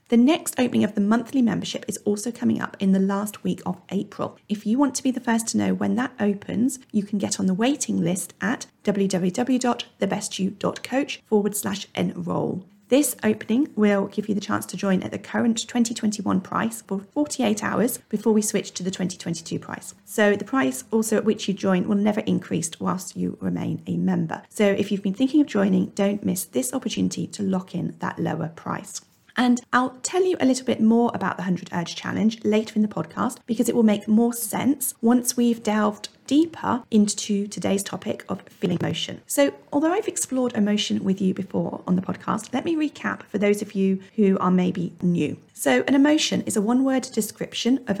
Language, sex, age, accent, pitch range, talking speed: English, female, 40-59, British, 195-245 Hz, 195 wpm